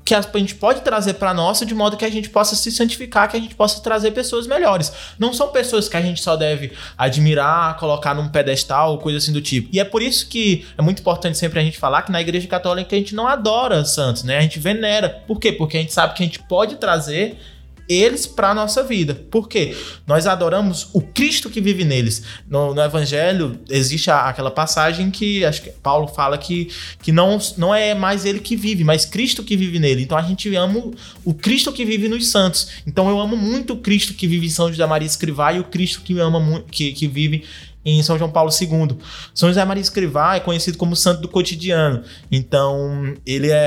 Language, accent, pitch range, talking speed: Portuguese, Brazilian, 145-195 Hz, 225 wpm